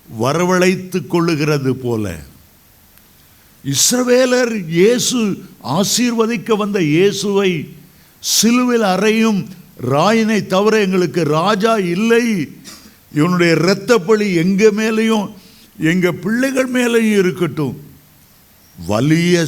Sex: male